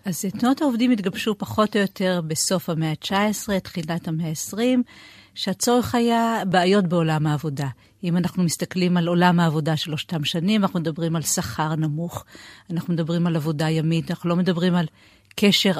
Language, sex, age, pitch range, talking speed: Hebrew, female, 50-69, 165-195 Hz, 155 wpm